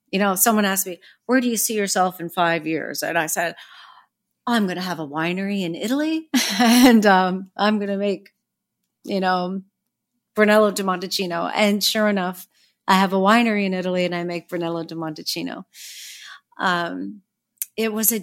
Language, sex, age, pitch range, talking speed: English, female, 40-59, 170-210 Hz, 180 wpm